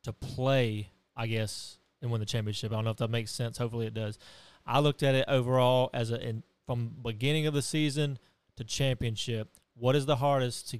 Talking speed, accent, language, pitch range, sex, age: 210 wpm, American, English, 115-140 Hz, male, 20-39